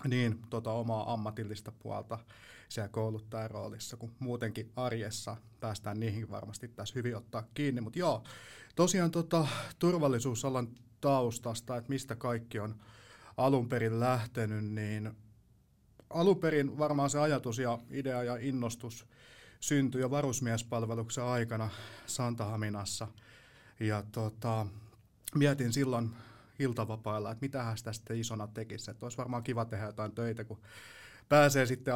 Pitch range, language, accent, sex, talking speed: 110-125 Hz, Finnish, native, male, 120 wpm